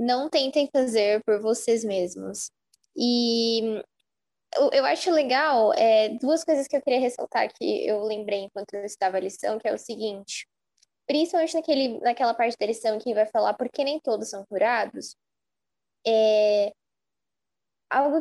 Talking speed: 150 wpm